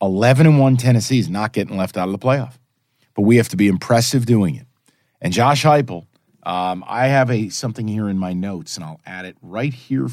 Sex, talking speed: male, 225 wpm